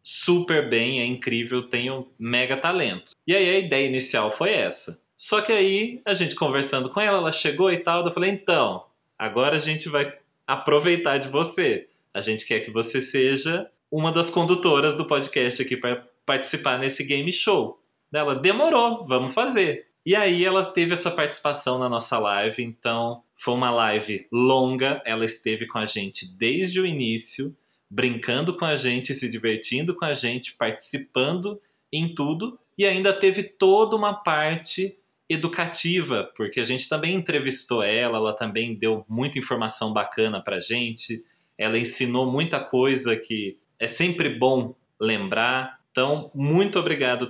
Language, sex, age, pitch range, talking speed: Portuguese, male, 20-39, 125-170 Hz, 155 wpm